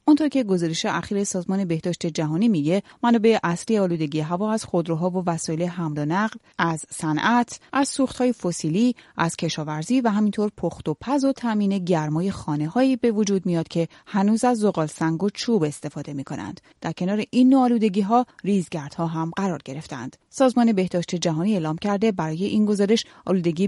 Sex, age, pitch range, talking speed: female, 30-49, 165-220 Hz, 155 wpm